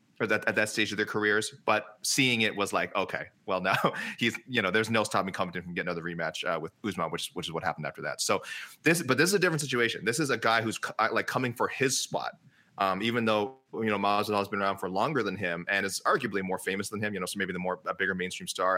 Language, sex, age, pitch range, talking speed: English, male, 30-49, 100-120 Hz, 270 wpm